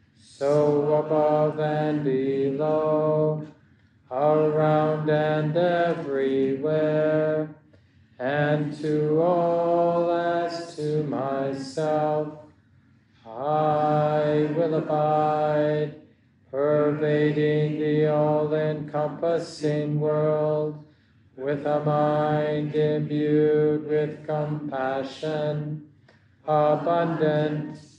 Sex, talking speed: male, 60 wpm